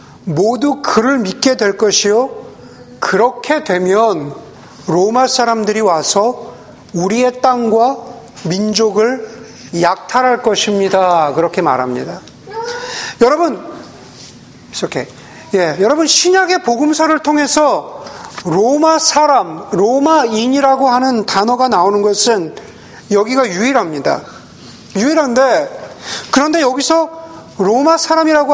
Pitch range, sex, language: 225-285 Hz, male, Korean